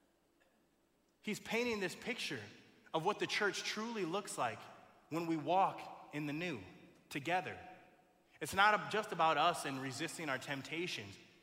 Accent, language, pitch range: American, English, 145-185 Hz